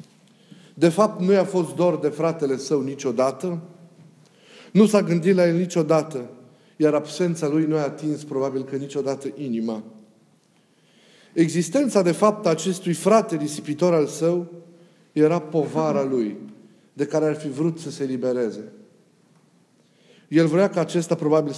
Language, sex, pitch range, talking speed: Romanian, male, 140-175 Hz, 140 wpm